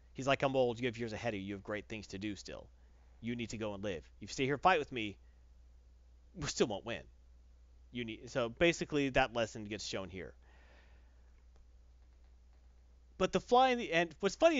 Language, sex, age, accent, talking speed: English, male, 30-49, American, 215 wpm